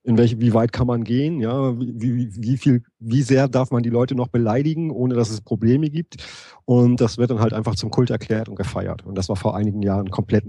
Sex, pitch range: male, 100-115 Hz